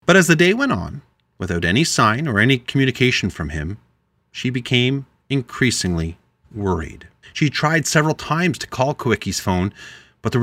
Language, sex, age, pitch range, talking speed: English, male, 40-59, 105-145 Hz, 160 wpm